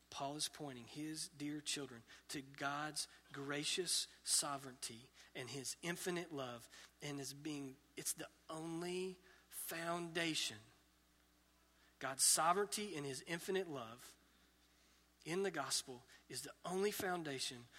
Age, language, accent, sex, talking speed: 40-59, English, American, male, 110 wpm